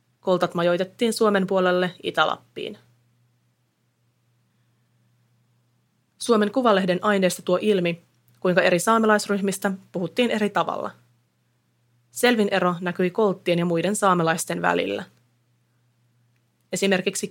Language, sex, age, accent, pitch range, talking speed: Finnish, female, 30-49, native, 120-195 Hz, 85 wpm